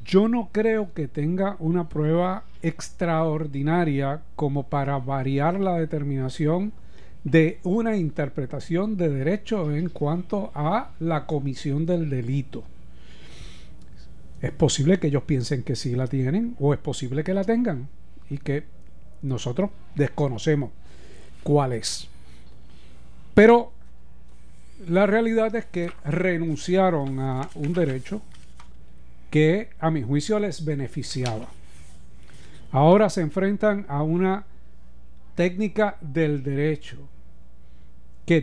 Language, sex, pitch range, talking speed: Spanish, male, 125-175 Hz, 110 wpm